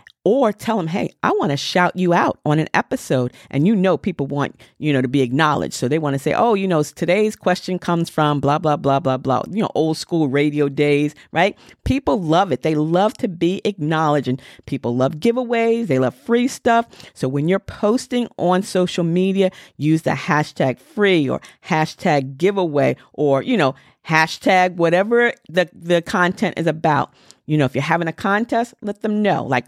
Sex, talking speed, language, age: female, 200 wpm, English, 40-59